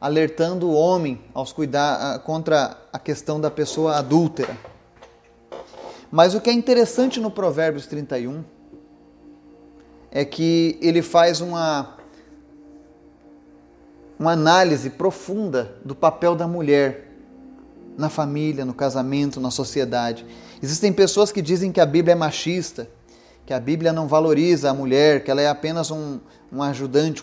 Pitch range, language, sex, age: 140-195 Hz, Portuguese, male, 30-49